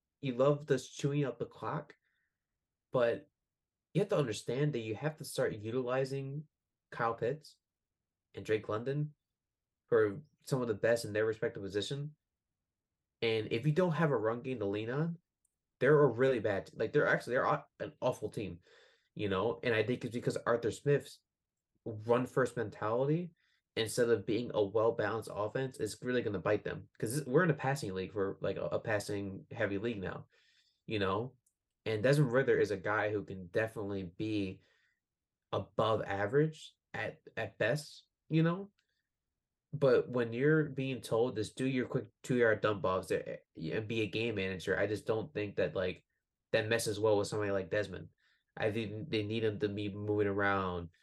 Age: 20-39